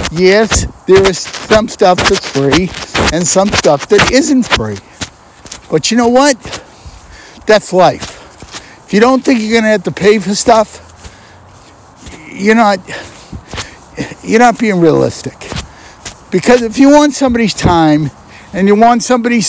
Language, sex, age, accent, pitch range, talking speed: English, male, 60-79, American, 185-255 Hz, 145 wpm